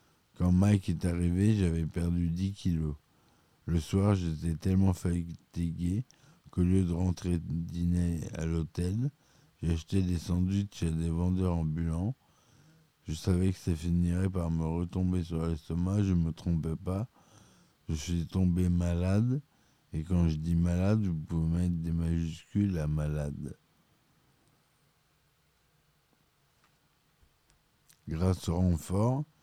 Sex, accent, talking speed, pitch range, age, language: male, French, 125 wpm, 80-95 Hz, 60-79, French